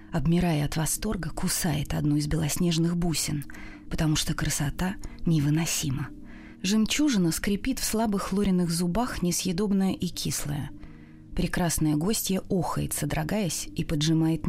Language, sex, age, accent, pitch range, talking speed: Russian, female, 20-39, native, 155-200 Hz, 110 wpm